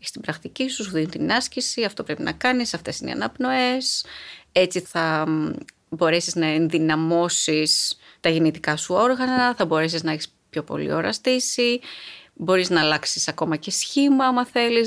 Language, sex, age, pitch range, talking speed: Greek, female, 30-49, 170-240 Hz, 155 wpm